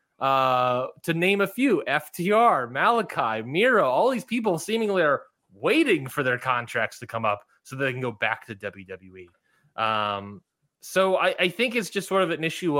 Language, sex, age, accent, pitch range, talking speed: English, male, 20-39, American, 130-185 Hz, 185 wpm